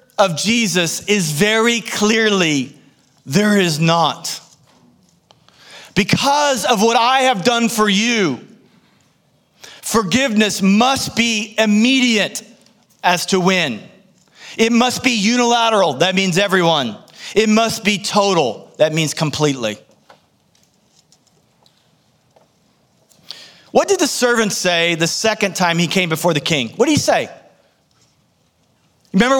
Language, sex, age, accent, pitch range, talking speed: English, male, 40-59, American, 160-225 Hz, 110 wpm